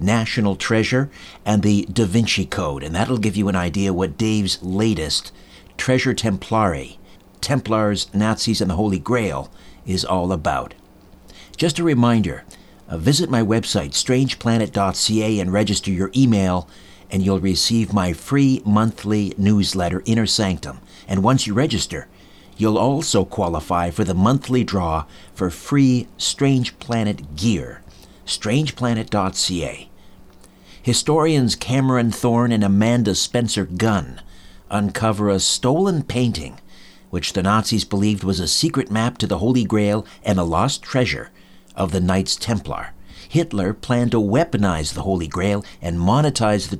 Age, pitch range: 50-69, 95-115 Hz